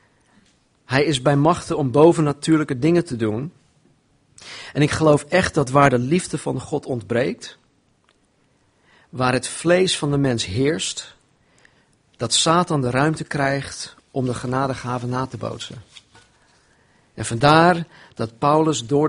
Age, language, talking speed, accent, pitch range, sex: 40-59, Dutch, 135 wpm, Dutch, 120-155 Hz, male